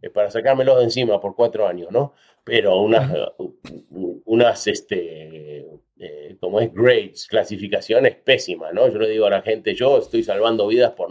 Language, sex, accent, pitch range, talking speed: Spanish, male, Argentinian, 110-185 Hz, 160 wpm